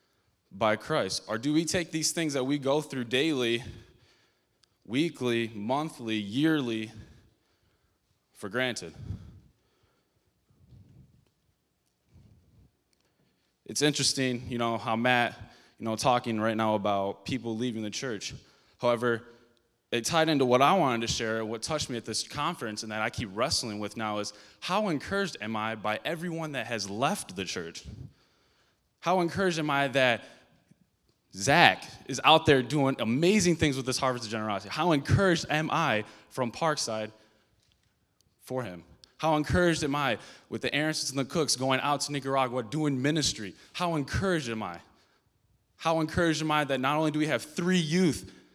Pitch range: 110-150 Hz